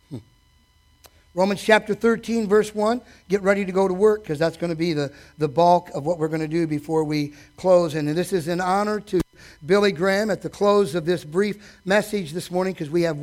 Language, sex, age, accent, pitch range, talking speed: English, male, 50-69, American, 150-205 Hz, 220 wpm